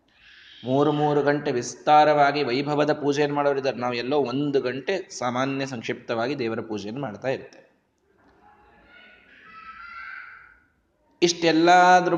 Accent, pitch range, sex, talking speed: native, 125-175 Hz, male, 90 wpm